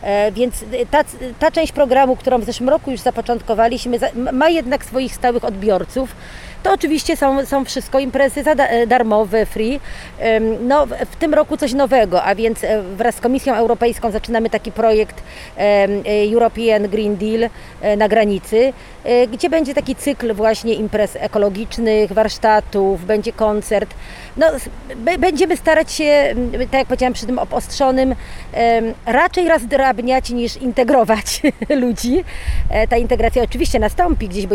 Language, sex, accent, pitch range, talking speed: Polish, female, native, 210-265 Hz, 135 wpm